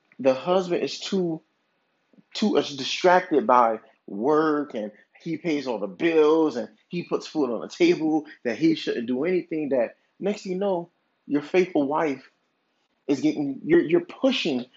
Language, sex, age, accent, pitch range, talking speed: English, male, 30-49, American, 150-220 Hz, 160 wpm